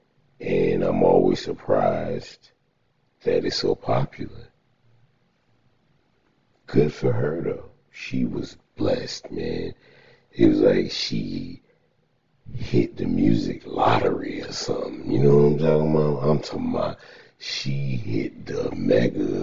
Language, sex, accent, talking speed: English, male, American, 125 wpm